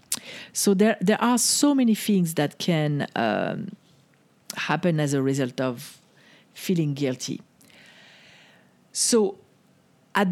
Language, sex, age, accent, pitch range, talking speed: English, female, 50-69, French, 165-210 Hz, 110 wpm